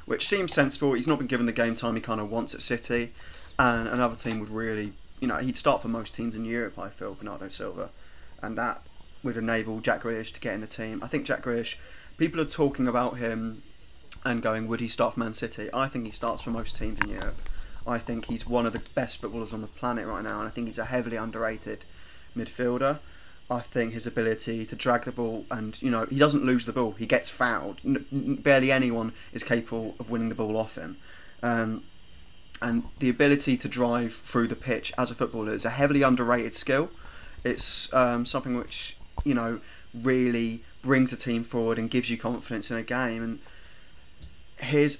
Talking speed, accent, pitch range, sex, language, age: 210 wpm, British, 115-125 Hz, male, English, 20-39